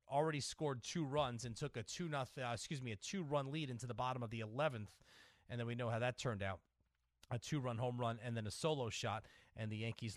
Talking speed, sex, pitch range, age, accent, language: 255 wpm, male, 120-155 Hz, 30-49, American, English